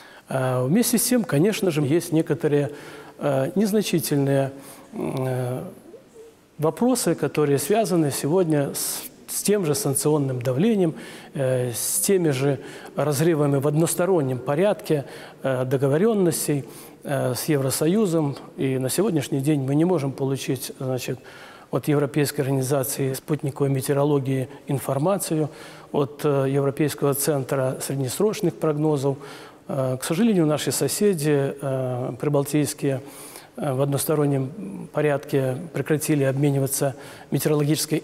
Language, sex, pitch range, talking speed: Russian, male, 135-170 Hz, 90 wpm